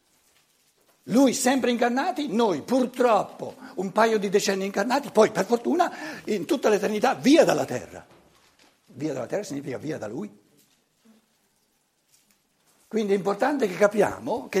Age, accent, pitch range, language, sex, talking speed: 60-79, native, 145-235 Hz, Italian, male, 130 wpm